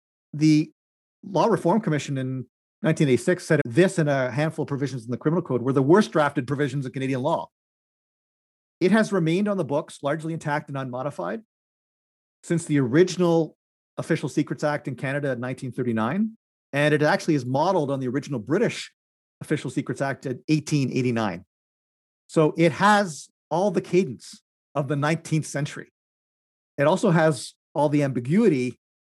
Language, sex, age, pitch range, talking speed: English, male, 40-59, 135-165 Hz, 155 wpm